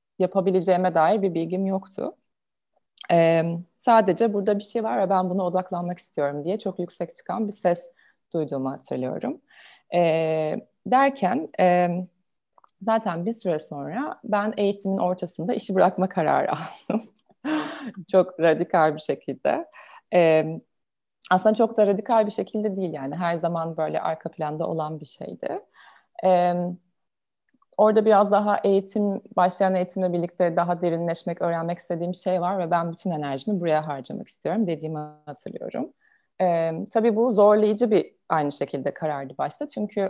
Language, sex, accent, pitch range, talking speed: Turkish, female, native, 165-195 Hz, 135 wpm